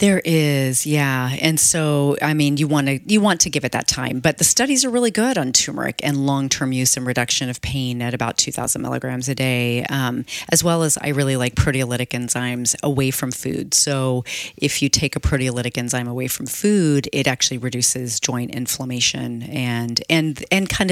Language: English